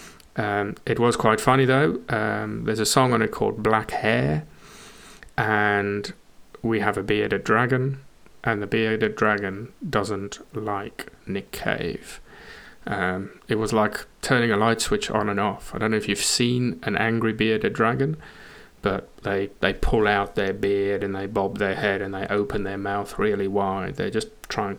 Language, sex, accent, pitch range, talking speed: English, male, British, 100-115 Hz, 175 wpm